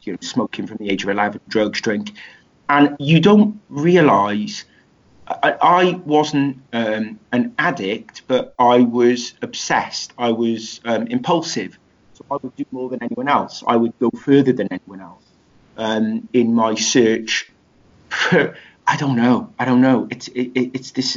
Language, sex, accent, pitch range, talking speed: English, male, British, 115-140 Hz, 165 wpm